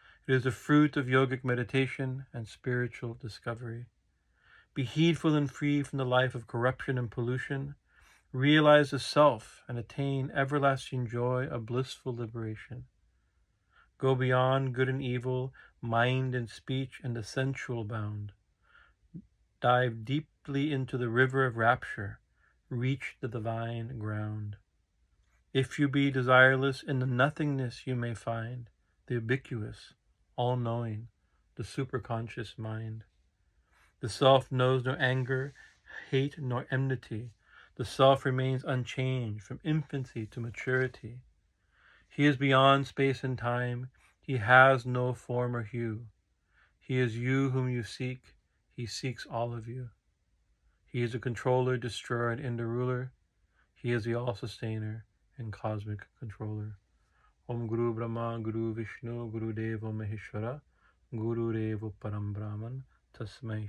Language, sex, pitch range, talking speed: English, male, 110-130 Hz, 125 wpm